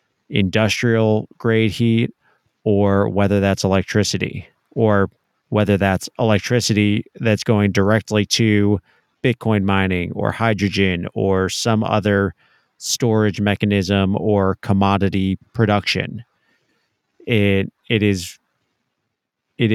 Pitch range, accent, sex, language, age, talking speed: 100-115 Hz, American, male, English, 30-49, 95 wpm